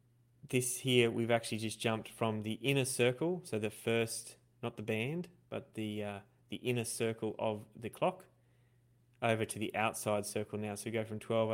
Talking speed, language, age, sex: 185 wpm, English, 20-39, male